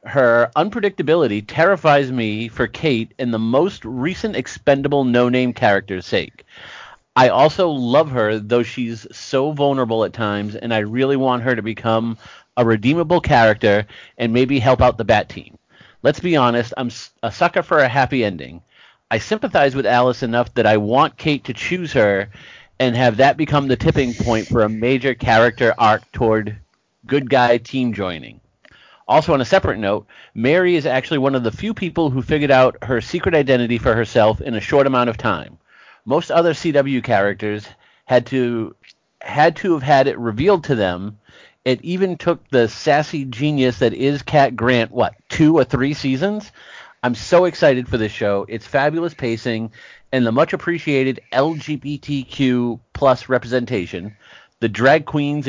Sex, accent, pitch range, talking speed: male, American, 115-145 Hz, 170 wpm